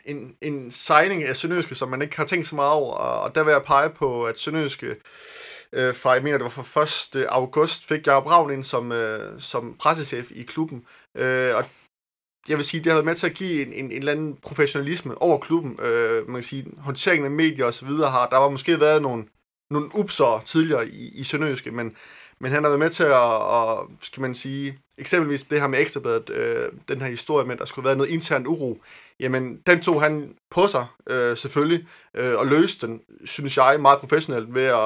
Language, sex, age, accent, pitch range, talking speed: Danish, male, 20-39, native, 130-160 Hz, 220 wpm